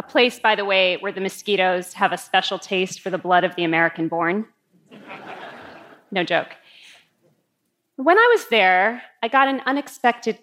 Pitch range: 180-240 Hz